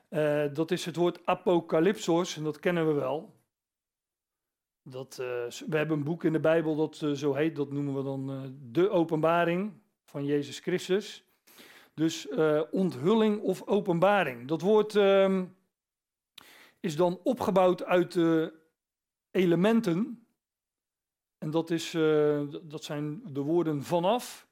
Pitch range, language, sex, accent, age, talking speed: 150-190 Hz, Dutch, male, Dutch, 40-59, 135 wpm